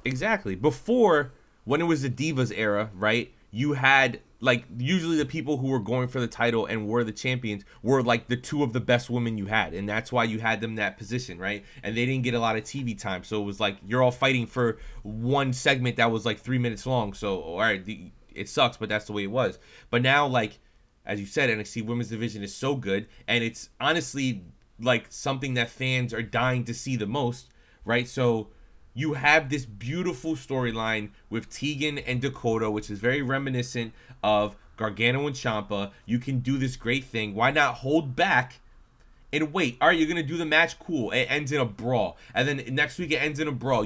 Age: 20-39